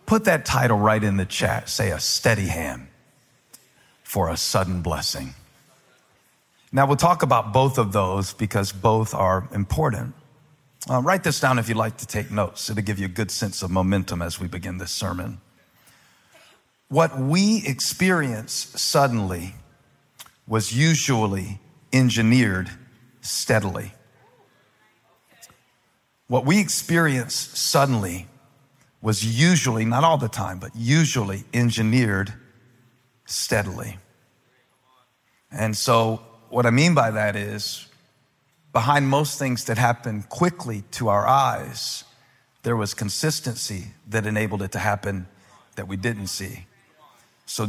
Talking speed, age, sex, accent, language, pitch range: 125 wpm, 50-69, male, American, English, 105-130 Hz